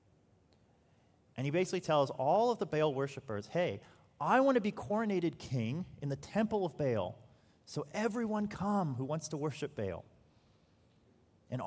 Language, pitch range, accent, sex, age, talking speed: English, 110-185 Hz, American, male, 30-49, 155 wpm